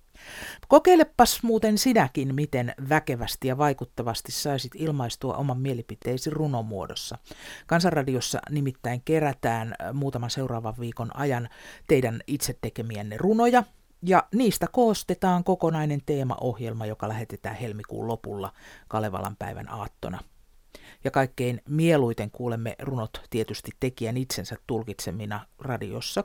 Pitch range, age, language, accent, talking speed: 115-170 Hz, 50-69, Finnish, native, 105 wpm